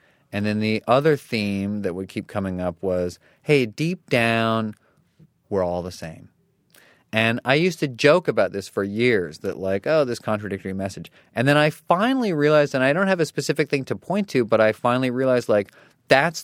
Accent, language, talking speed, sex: American, English, 195 wpm, male